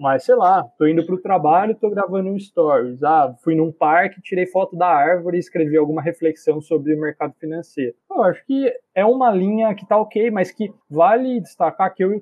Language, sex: Portuguese, male